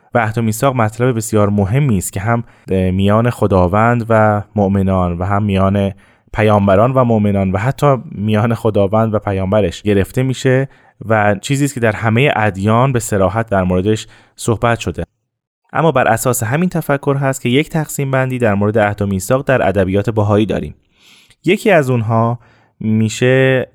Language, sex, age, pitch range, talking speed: Persian, male, 20-39, 100-130 Hz, 150 wpm